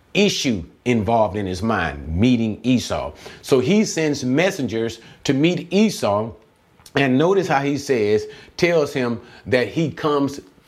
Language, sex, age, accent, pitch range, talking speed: English, male, 40-59, American, 120-175 Hz, 135 wpm